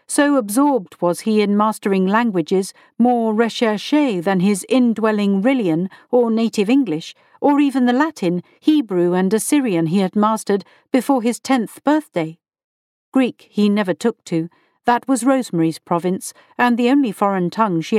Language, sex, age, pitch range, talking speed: English, female, 50-69, 195-270 Hz, 150 wpm